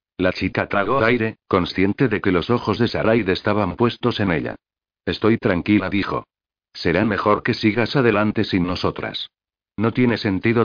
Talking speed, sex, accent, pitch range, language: 160 wpm, male, Spanish, 95-115 Hz, Spanish